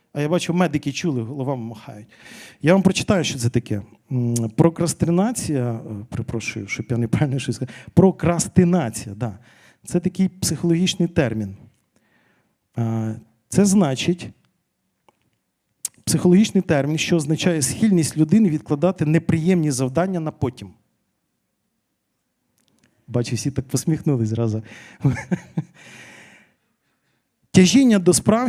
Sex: male